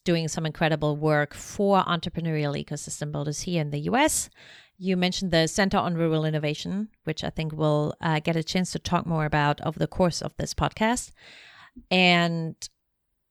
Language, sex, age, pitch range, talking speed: English, female, 30-49, 150-185 Hz, 170 wpm